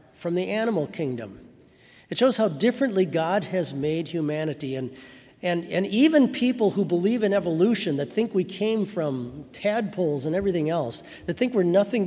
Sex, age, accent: male, 50-69, American